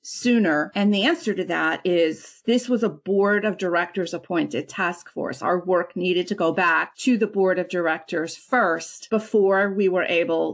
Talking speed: 180 wpm